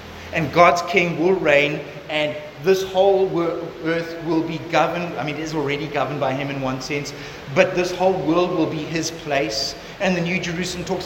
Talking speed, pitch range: 200 wpm, 165-215 Hz